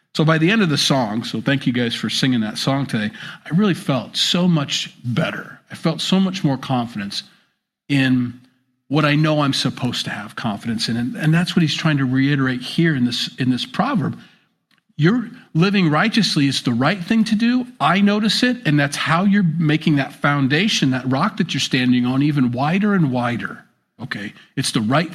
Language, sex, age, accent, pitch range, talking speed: English, male, 40-59, American, 125-170 Hz, 200 wpm